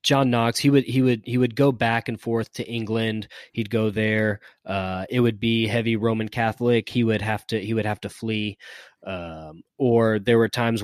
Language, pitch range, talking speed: English, 100-120 Hz, 210 wpm